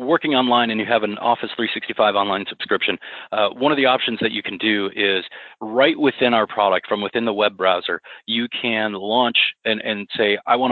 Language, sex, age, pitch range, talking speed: English, male, 30-49, 110-130 Hz, 205 wpm